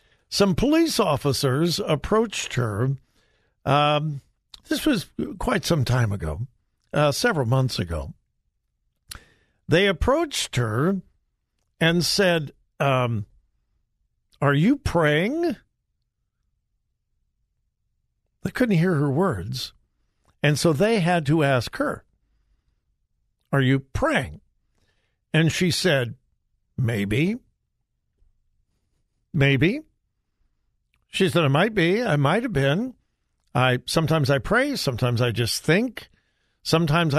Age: 50-69